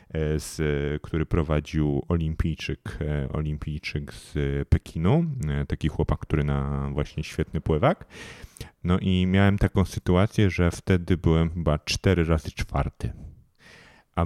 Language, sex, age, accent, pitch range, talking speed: Polish, male, 30-49, native, 80-90 Hz, 115 wpm